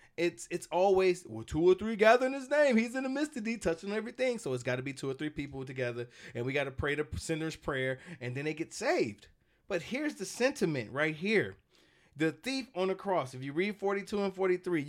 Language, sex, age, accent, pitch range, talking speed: English, male, 30-49, American, 140-205 Hz, 230 wpm